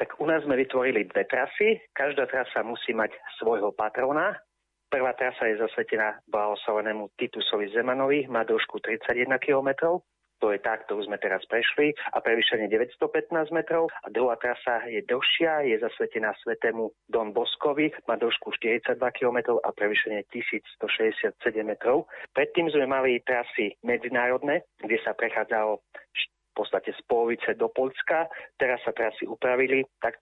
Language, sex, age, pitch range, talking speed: Slovak, male, 30-49, 120-175 Hz, 145 wpm